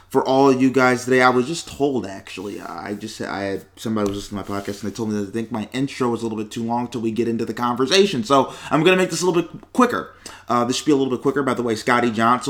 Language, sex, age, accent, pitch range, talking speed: English, male, 30-49, American, 105-140 Hz, 315 wpm